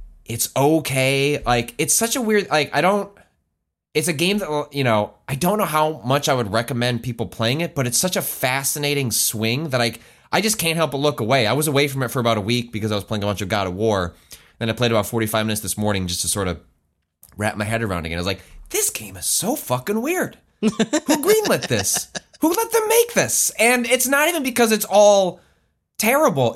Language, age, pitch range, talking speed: English, 20-39, 110-170 Hz, 235 wpm